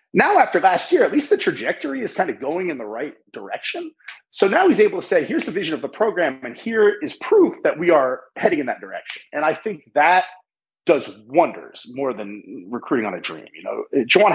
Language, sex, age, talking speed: English, male, 30-49, 225 wpm